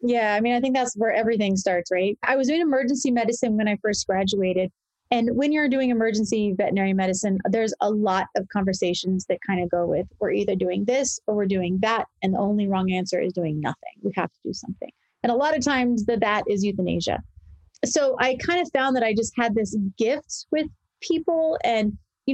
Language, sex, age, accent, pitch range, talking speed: English, female, 30-49, American, 195-245 Hz, 220 wpm